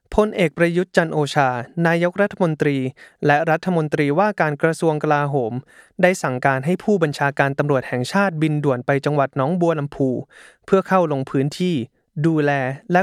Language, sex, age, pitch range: Thai, male, 20-39, 135-175 Hz